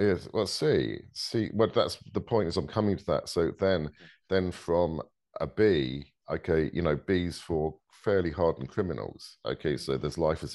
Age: 50-69